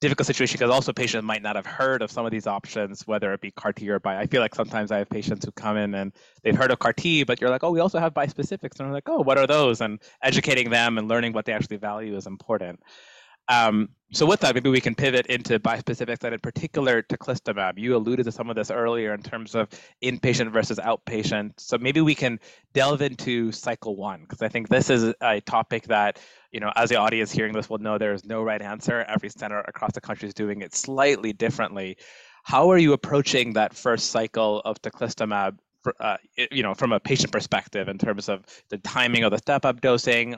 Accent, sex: American, male